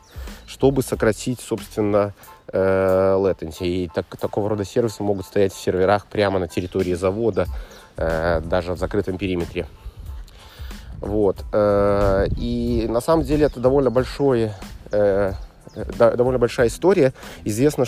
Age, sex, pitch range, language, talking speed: 30-49, male, 100-120 Hz, Russian, 110 wpm